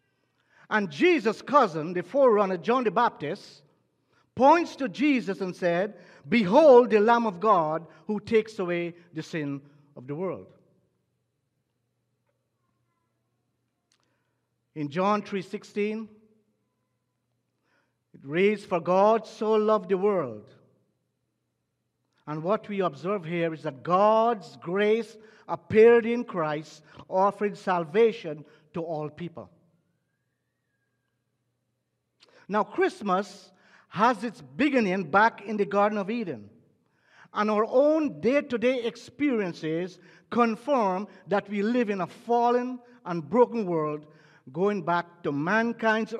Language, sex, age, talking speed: English, male, 50-69, 110 wpm